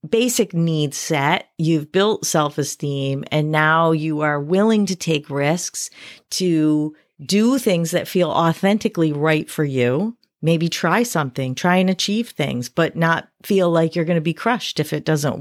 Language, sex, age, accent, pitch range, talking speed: English, female, 40-59, American, 150-180 Hz, 165 wpm